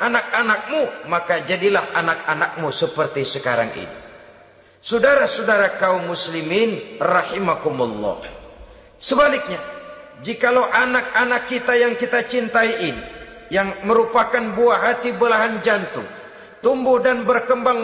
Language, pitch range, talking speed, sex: Indonesian, 150-235 Hz, 95 wpm, male